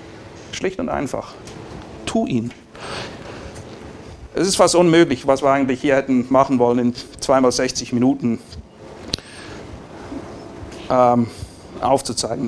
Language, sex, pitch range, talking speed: German, male, 125-150 Hz, 100 wpm